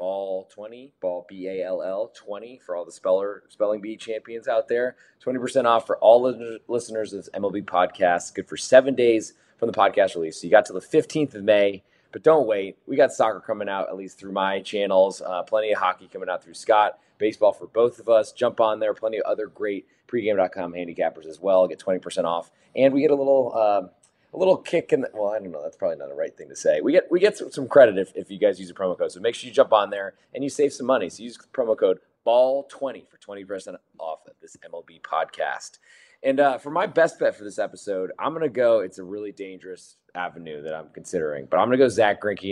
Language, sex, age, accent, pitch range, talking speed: English, male, 20-39, American, 95-130 Hz, 240 wpm